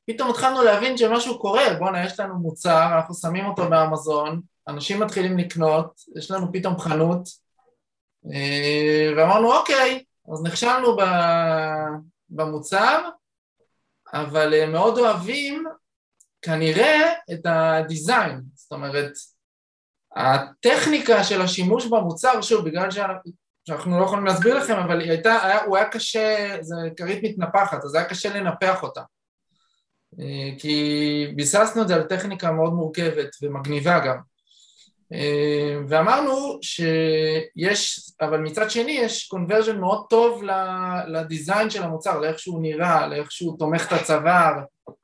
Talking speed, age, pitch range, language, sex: 115 wpm, 20-39, 155-205 Hz, Hebrew, male